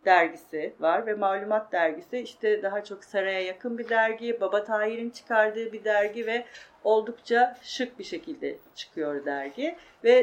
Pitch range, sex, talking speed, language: 205-270 Hz, female, 145 wpm, Turkish